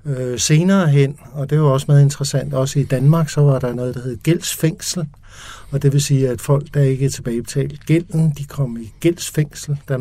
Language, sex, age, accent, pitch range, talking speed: Danish, male, 60-79, native, 125-150 Hz, 210 wpm